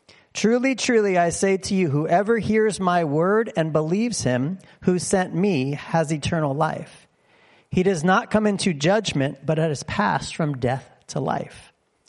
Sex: male